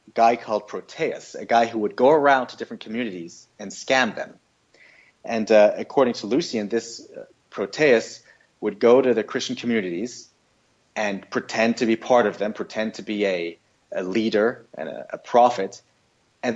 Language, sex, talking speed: English, male, 170 wpm